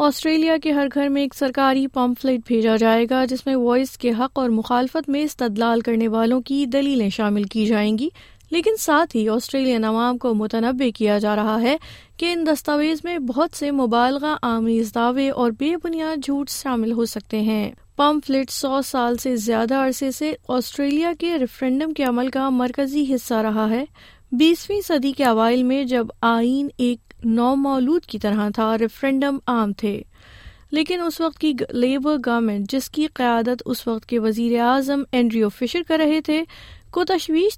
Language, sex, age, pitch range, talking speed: Urdu, female, 20-39, 235-295 Hz, 175 wpm